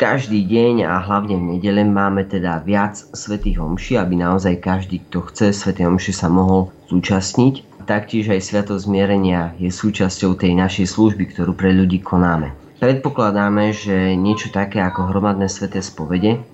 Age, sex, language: 30-49, male, Slovak